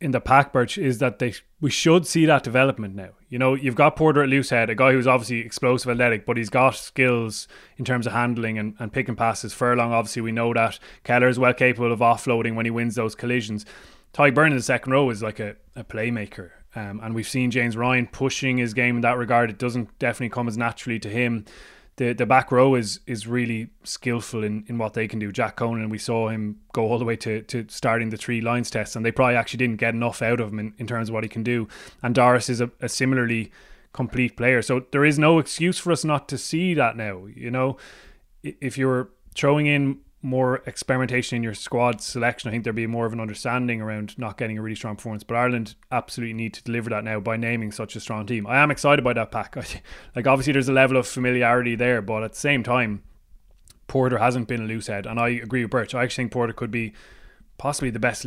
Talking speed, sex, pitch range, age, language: 240 wpm, male, 115-125 Hz, 20-39, English